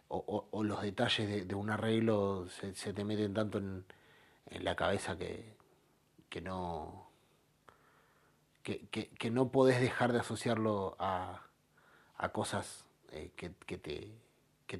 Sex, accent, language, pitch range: male, Argentinian, Spanish, 95-125 Hz